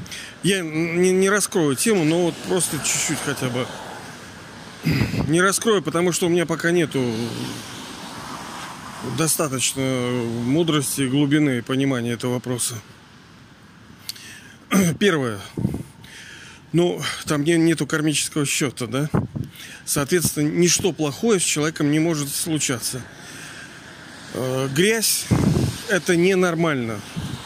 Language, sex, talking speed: Russian, male, 95 wpm